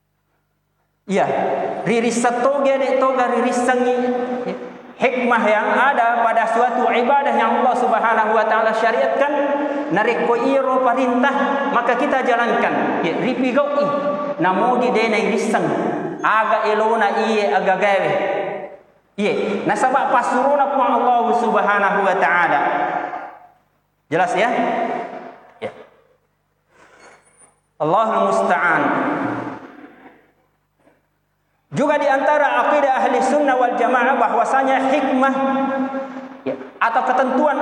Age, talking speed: 40-59, 95 wpm